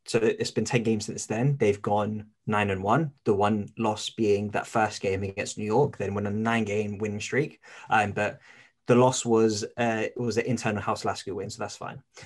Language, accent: English, British